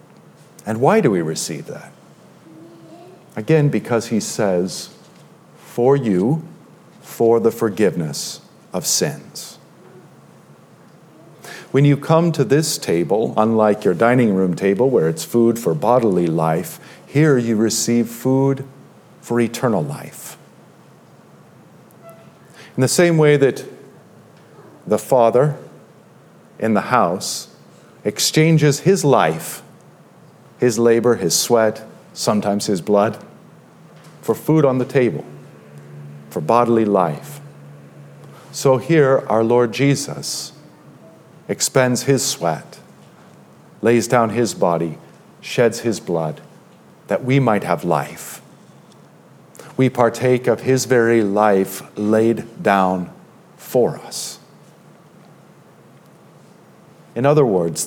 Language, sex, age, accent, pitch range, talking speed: English, male, 50-69, American, 100-140 Hz, 105 wpm